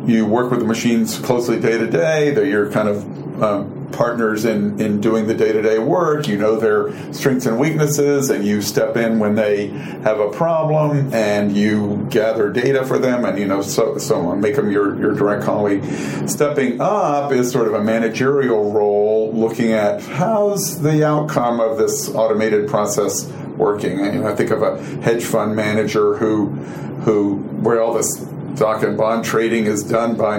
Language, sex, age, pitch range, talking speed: English, male, 40-59, 105-125 Hz, 180 wpm